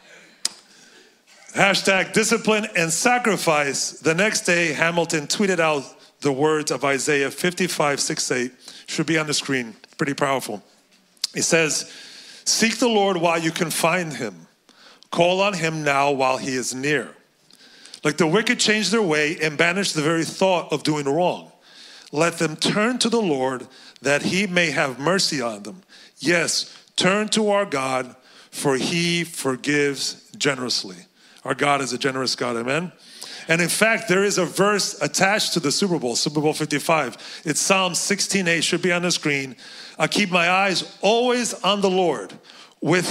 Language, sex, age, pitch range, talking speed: English, male, 40-59, 145-190 Hz, 165 wpm